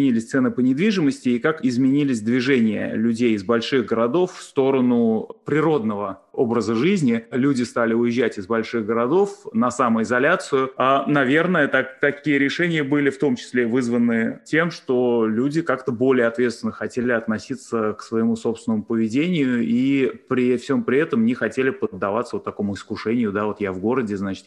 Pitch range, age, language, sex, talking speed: 115-140 Hz, 20-39, Russian, male, 155 wpm